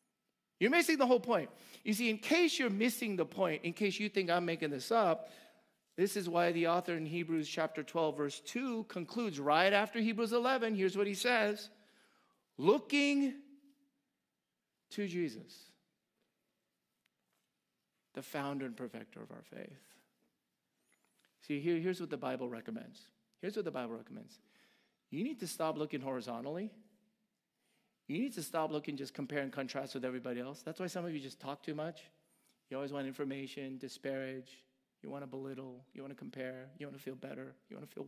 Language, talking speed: English, 175 wpm